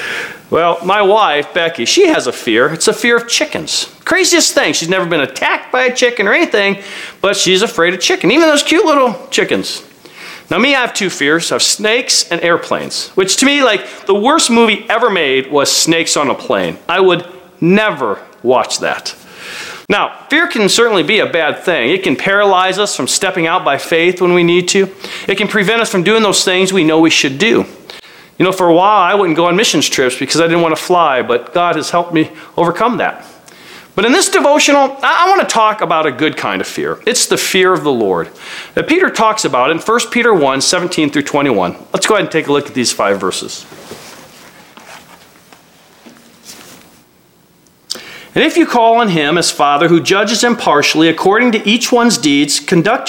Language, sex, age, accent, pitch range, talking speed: English, male, 40-59, American, 165-235 Hz, 205 wpm